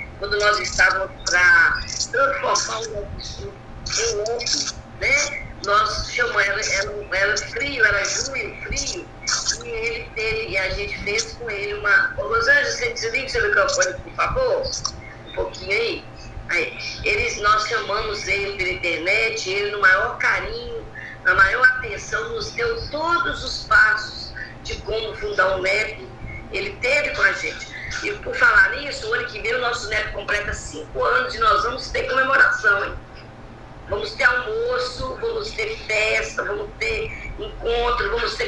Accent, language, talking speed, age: Brazilian, Portuguese, 155 wpm, 50-69